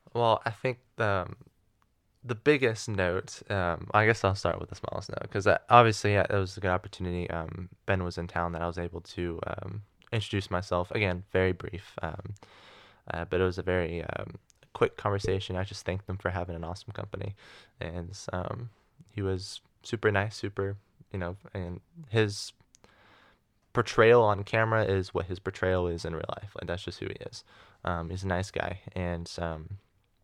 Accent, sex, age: American, male, 20-39